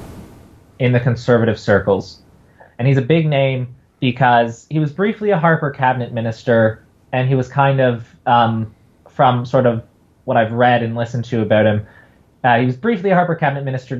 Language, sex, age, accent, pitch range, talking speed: English, male, 20-39, American, 110-135 Hz, 180 wpm